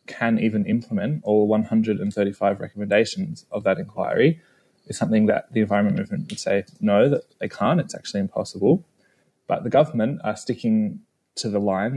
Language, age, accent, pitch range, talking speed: English, 20-39, Australian, 110-155 Hz, 160 wpm